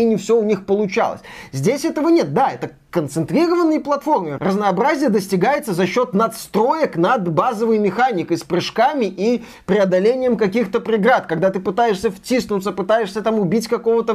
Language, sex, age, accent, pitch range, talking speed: Russian, male, 20-39, native, 170-215 Hz, 150 wpm